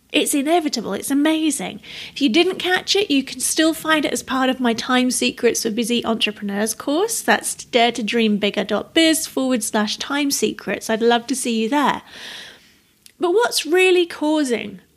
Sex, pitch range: female, 230-300 Hz